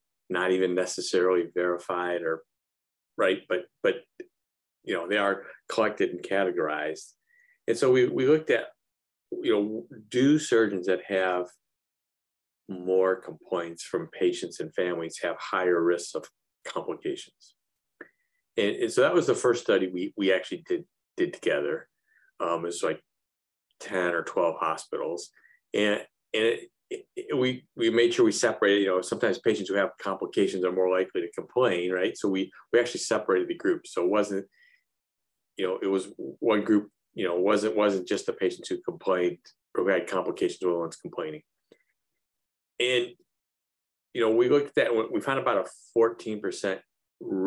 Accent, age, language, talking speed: American, 50-69, English, 160 wpm